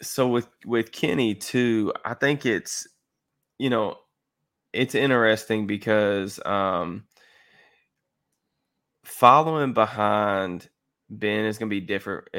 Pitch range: 95-110 Hz